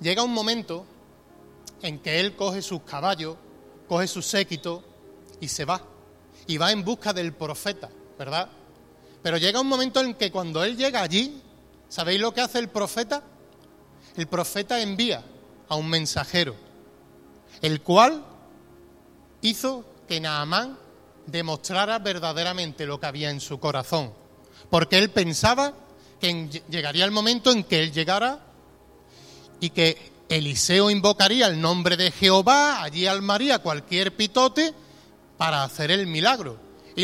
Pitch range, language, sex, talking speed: 150-220 Hz, Spanish, male, 140 wpm